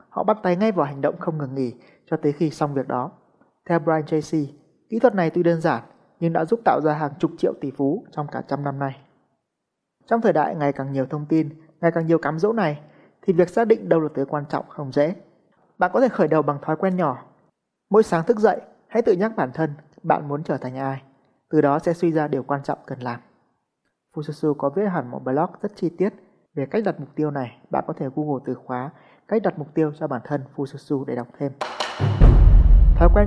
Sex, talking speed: male, 240 wpm